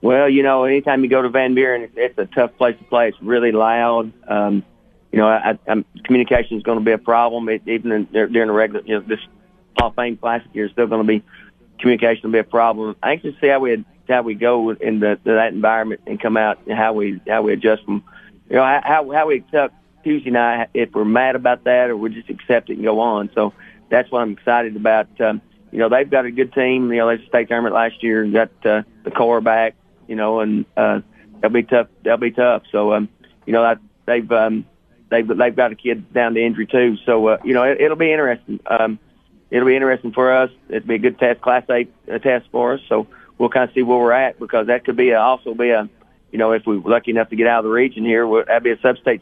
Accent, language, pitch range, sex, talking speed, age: American, English, 110-125 Hz, male, 255 wpm, 40-59